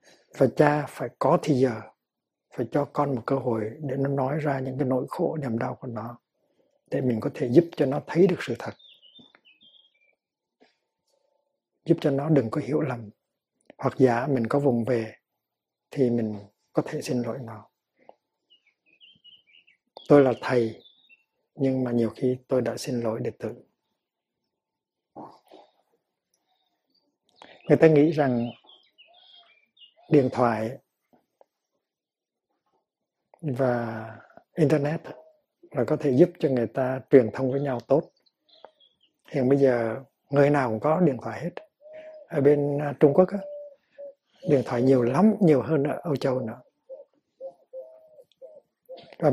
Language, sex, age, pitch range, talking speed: Vietnamese, male, 60-79, 125-170 Hz, 135 wpm